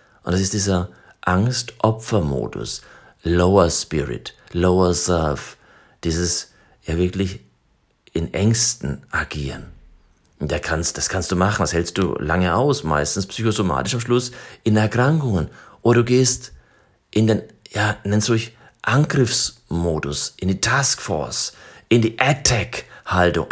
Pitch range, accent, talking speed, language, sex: 90-125 Hz, German, 125 wpm, German, male